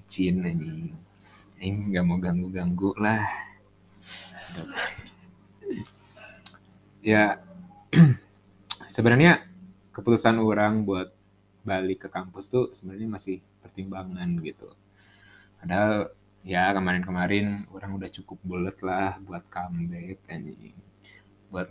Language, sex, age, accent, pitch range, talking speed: Indonesian, male, 20-39, native, 90-105 Hz, 85 wpm